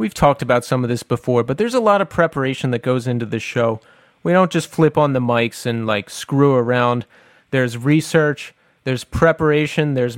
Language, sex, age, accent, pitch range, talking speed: English, male, 30-49, American, 130-165 Hz, 200 wpm